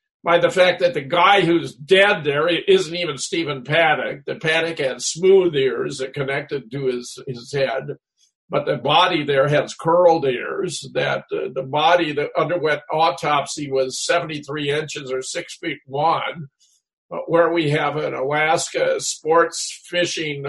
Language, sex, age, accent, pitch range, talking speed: English, male, 50-69, American, 145-175 Hz, 160 wpm